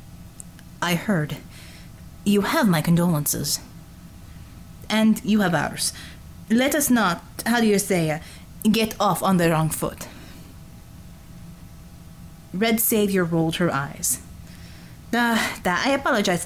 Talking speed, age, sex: 120 wpm, 30-49, female